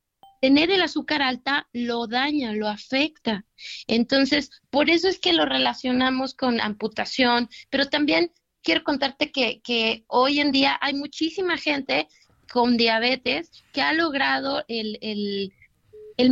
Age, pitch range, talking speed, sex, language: 30-49, 235-285 Hz, 135 wpm, female, Spanish